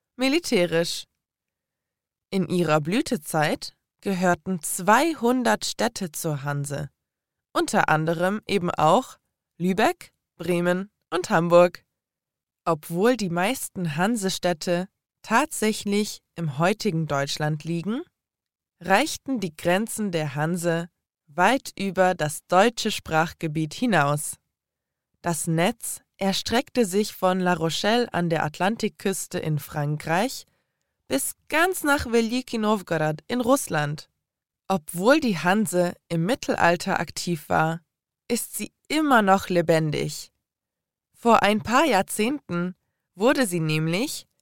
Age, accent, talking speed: 20-39, German, 105 wpm